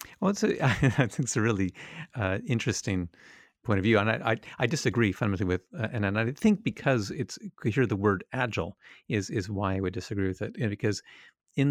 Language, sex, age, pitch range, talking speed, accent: English, male, 40-59, 95-120 Hz, 210 wpm, American